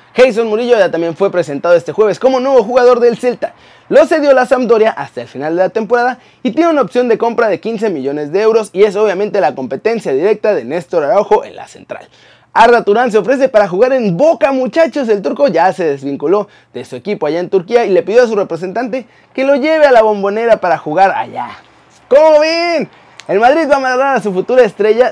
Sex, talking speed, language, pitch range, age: male, 220 wpm, Spanish, 205-265 Hz, 30-49